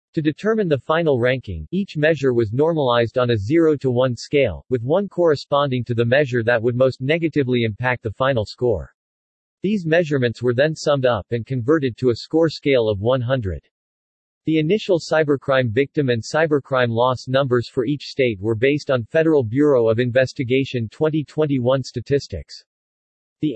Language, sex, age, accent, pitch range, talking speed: English, male, 40-59, American, 120-150 Hz, 165 wpm